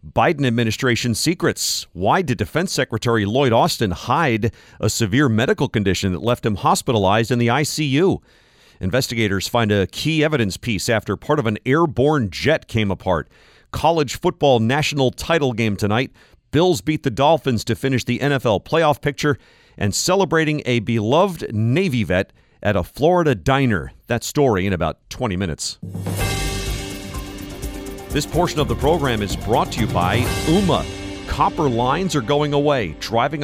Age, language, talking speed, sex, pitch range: 40-59, English, 150 wpm, male, 100-135 Hz